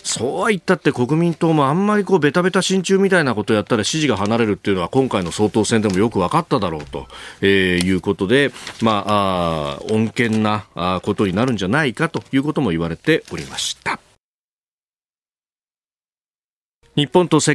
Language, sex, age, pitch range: Japanese, male, 40-59, 105-150 Hz